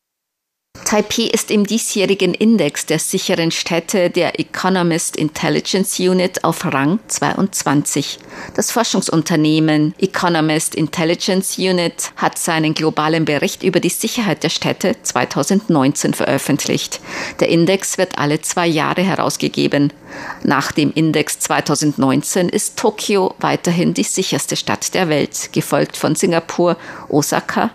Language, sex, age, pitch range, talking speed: German, female, 50-69, 155-190 Hz, 115 wpm